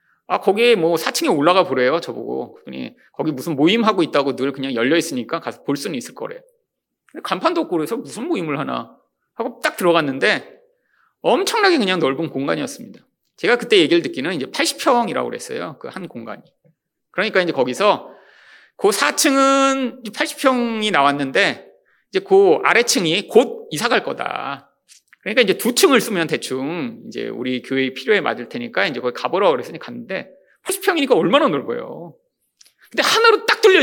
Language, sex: Korean, male